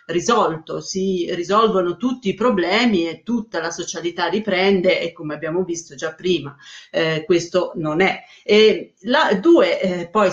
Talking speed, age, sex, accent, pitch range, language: 150 wpm, 30-49, female, native, 175-225 Hz, Italian